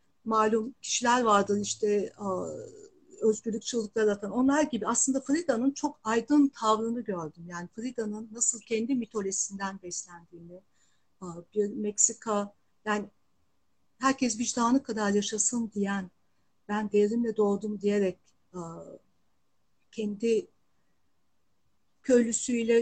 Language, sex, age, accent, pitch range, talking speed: Turkish, female, 50-69, native, 205-245 Hz, 90 wpm